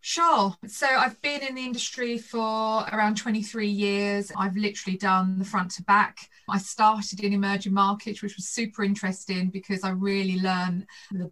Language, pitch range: English, 185-210 Hz